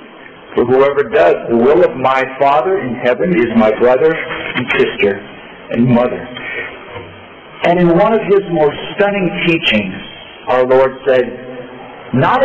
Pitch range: 150-225 Hz